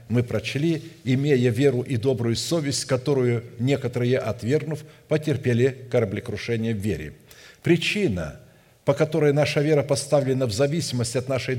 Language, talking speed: English, 125 wpm